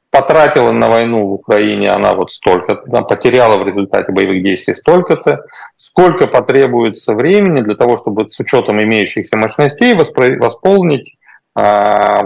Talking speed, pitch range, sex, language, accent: 140 wpm, 115-175 Hz, male, Russian, native